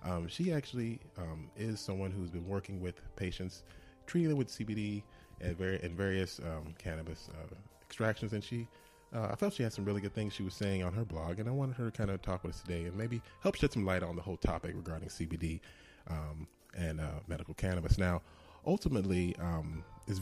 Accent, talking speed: American, 215 wpm